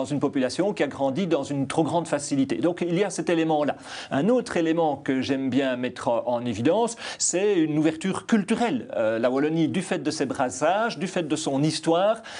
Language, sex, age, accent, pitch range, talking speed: French, male, 40-59, French, 145-190 Hz, 205 wpm